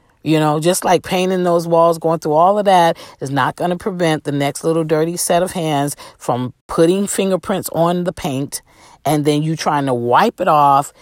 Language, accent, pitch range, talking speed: English, American, 140-185 Hz, 205 wpm